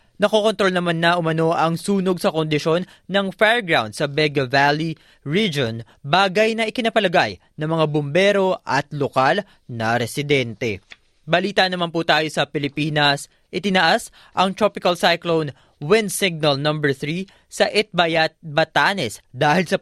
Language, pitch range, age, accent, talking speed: Filipino, 145-185 Hz, 20-39, native, 130 wpm